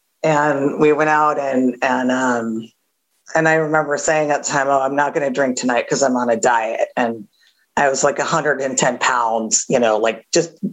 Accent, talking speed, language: American, 200 wpm, English